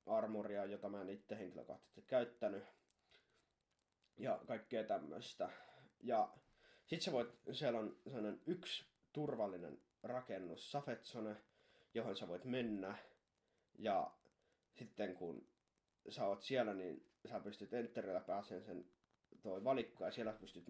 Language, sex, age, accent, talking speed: Finnish, male, 20-39, native, 120 wpm